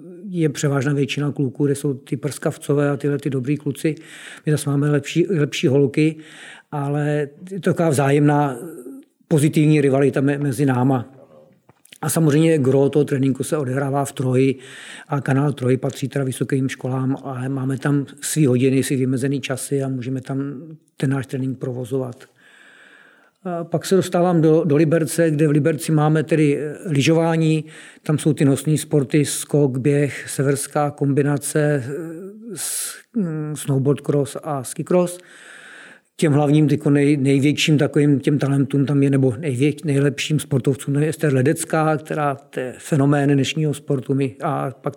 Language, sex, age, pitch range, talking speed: Czech, male, 50-69, 135-155 Hz, 150 wpm